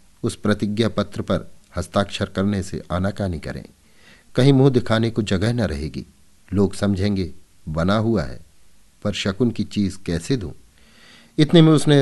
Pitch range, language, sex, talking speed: 80-105 Hz, Hindi, male, 150 wpm